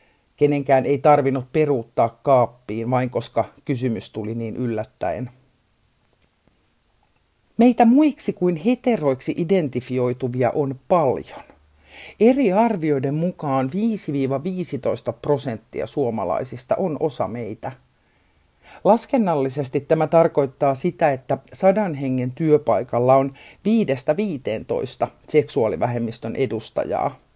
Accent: native